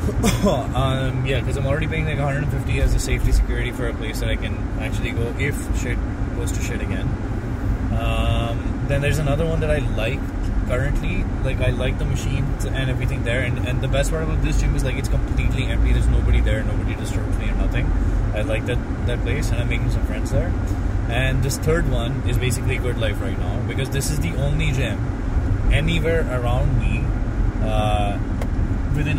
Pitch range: 95-120 Hz